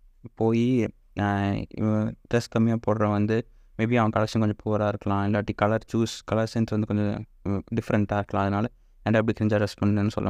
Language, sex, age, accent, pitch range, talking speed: Tamil, male, 20-39, native, 105-120 Hz, 155 wpm